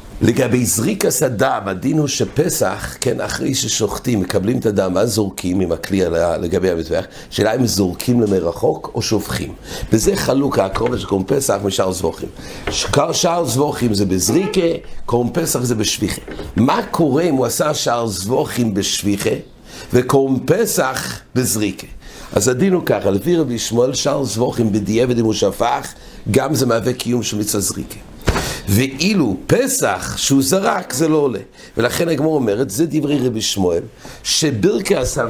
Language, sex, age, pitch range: English, male, 60-79, 115-150 Hz